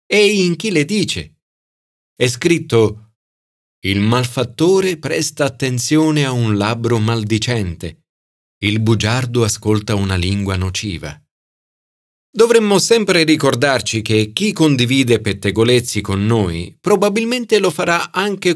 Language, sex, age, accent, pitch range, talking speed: Italian, male, 40-59, native, 105-160 Hz, 110 wpm